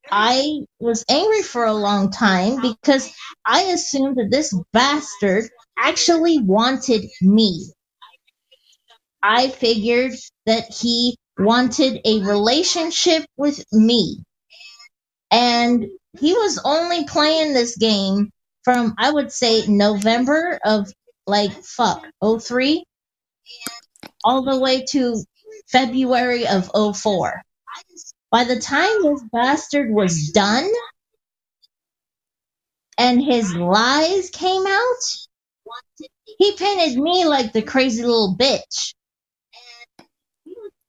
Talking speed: 100 wpm